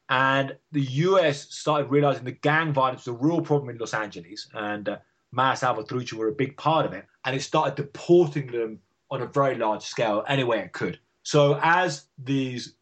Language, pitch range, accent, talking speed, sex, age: English, 120-150 Hz, British, 200 wpm, male, 30-49